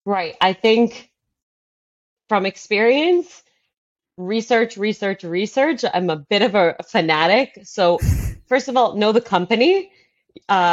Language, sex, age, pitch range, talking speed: English, female, 20-39, 175-240 Hz, 125 wpm